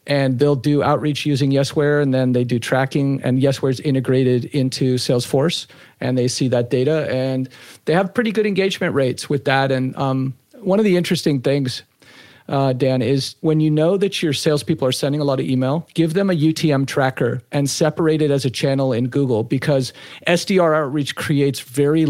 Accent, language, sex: American, English, male